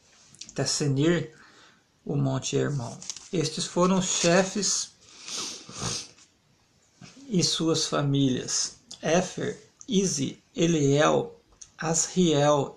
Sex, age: male, 50-69